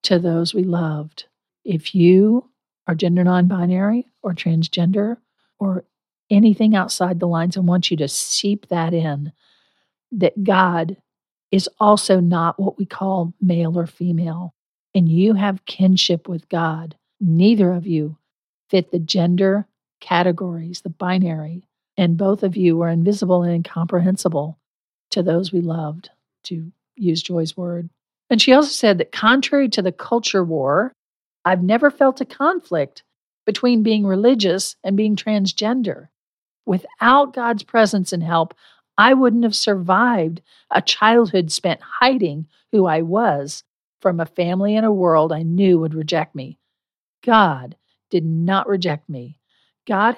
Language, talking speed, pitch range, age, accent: English, 140 wpm, 170-210 Hz, 50-69, American